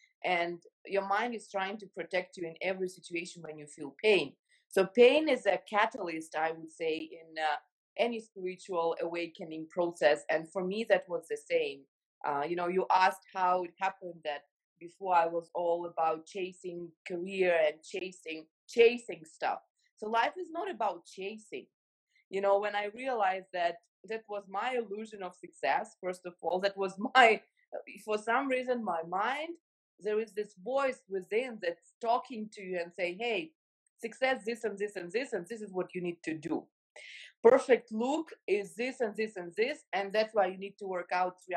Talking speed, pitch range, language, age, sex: 185 wpm, 175-245 Hz, English, 20-39, female